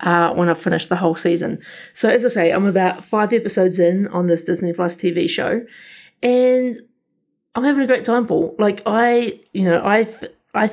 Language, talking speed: English, 190 wpm